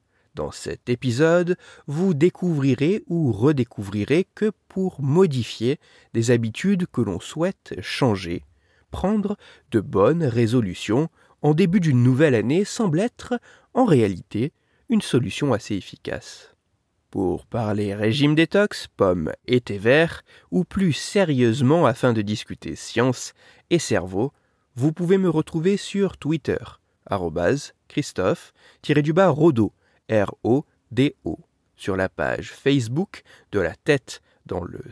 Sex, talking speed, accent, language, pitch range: male, 115 wpm, French, French, 115-180 Hz